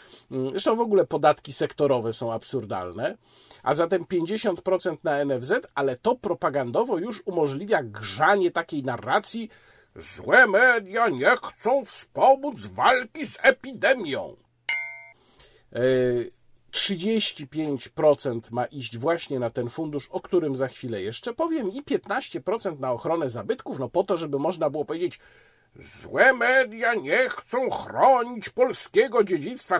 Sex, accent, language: male, native, Polish